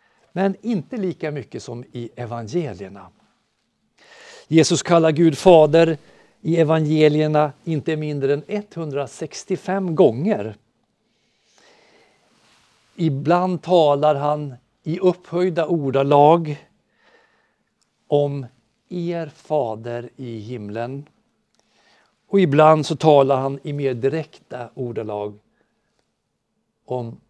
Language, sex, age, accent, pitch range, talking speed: Swedish, male, 50-69, native, 135-170 Hz, 85 wpm